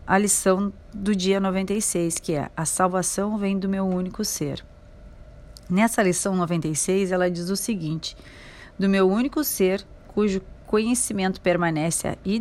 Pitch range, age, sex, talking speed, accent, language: 175-205 Hz, 40-59, female, 140 wpm, Brazilian, Portuguese